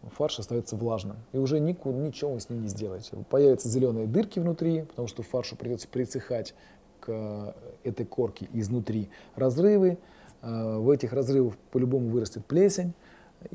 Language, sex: Russian, male